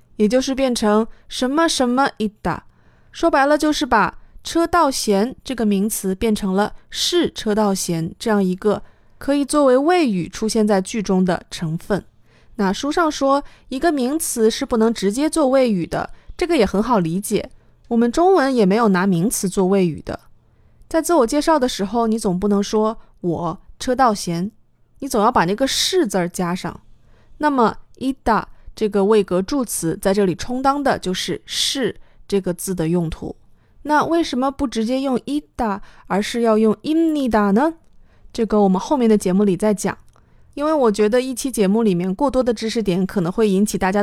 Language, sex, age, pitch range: Chinese, female, 20-39, 200-275 Hz